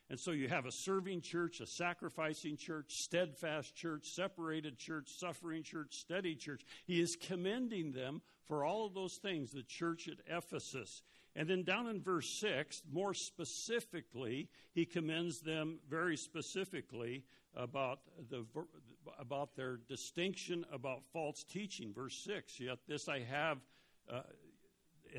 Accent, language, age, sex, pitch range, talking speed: American, English, 60-79, male, 130-170 Hz, 140 wpm